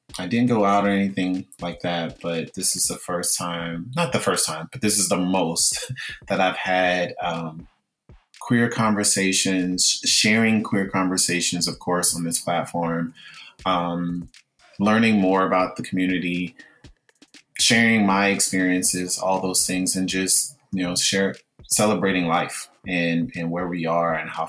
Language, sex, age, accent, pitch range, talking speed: English, male, 30-49, American, 85-95 Hz, 155 wpm